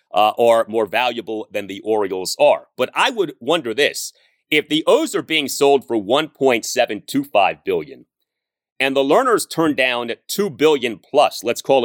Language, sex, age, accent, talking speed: English, male, 30-49, American, 160 wpm